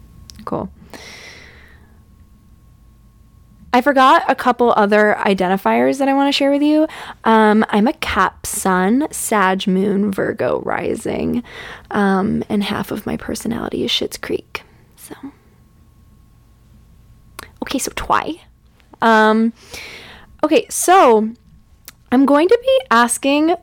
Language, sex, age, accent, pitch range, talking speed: English, female, 20-39, American, 205-255 Hz, 110 wpm